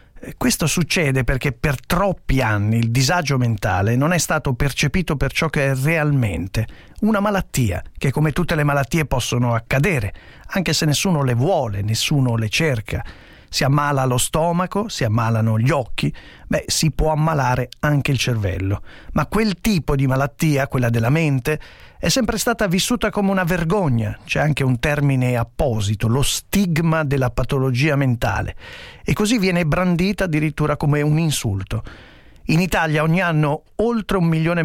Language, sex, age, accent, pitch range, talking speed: Italian, male, 40-59, native, 125-170 Hz, 155 wpm